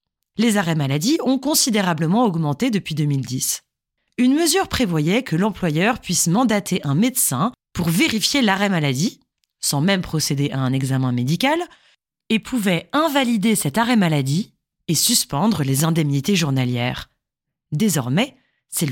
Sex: female